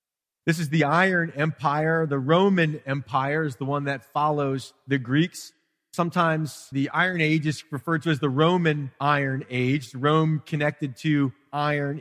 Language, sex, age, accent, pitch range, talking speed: English, male, 30-49, American, 130-160 Hz, 155 wpm